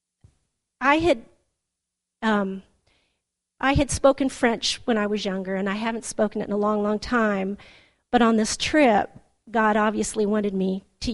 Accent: American